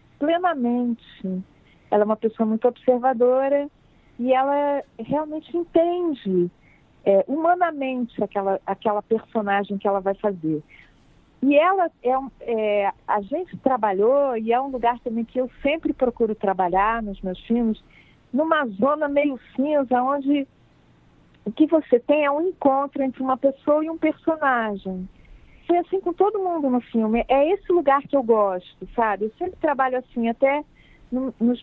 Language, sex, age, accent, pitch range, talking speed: Portuguese, female, 40-59, Brazilian, 225-295 Hz, 150 wpm